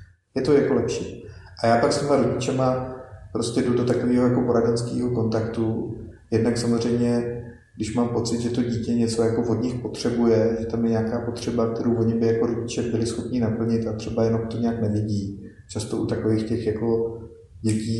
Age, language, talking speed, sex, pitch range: 30-49, Slovak, 185 wpm, male, 110-115 Hz